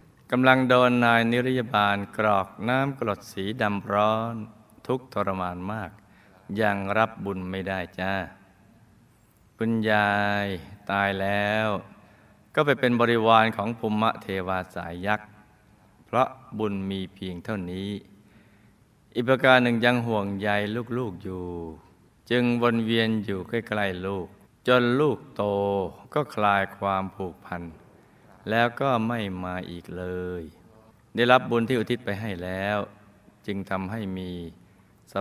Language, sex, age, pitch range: Thai, male, 20-39, 95-115 Hz